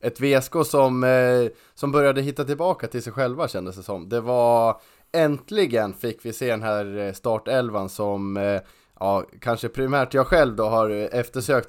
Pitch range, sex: 105-130 Hz, male